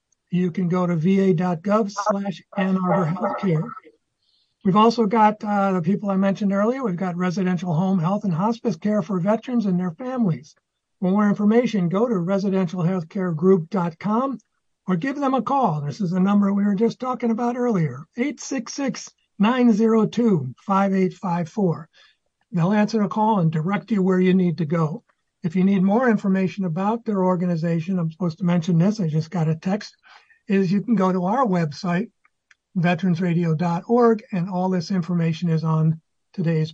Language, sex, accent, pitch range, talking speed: English, male, American, 175-210 Hz, 155 wpm